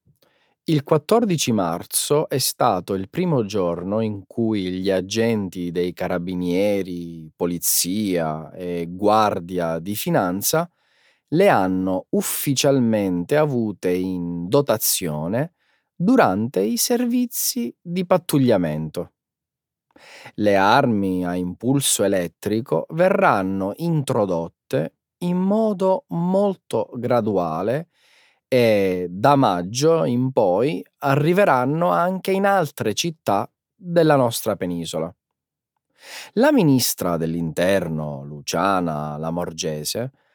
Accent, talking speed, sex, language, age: native, 90 wpm, male, Italian, 30-49